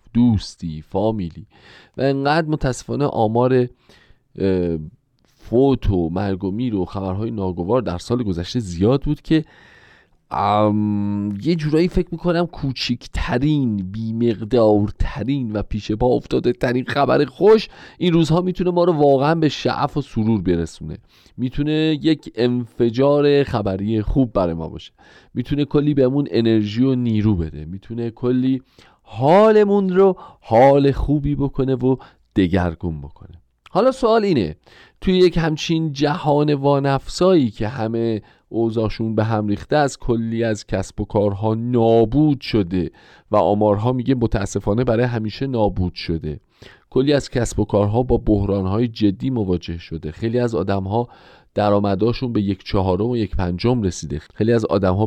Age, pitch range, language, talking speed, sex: 40-59, 100-135 Hz, Persian, 135 wpm, male